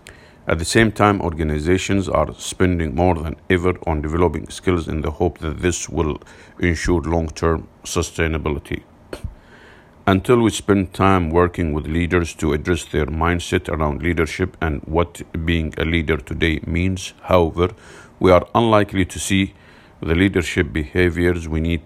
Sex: male